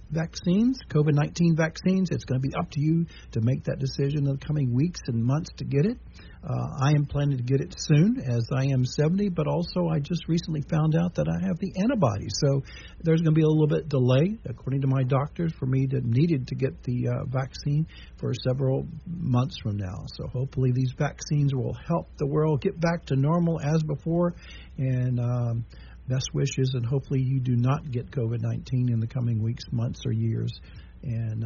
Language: English